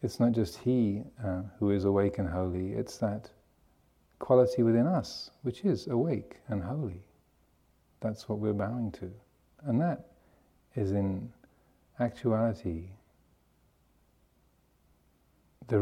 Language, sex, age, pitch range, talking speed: English, male, 40-59, 85-110 Hz, 120 wpm